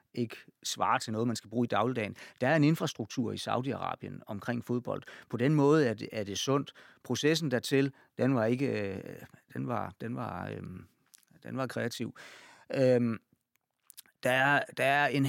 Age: 40-59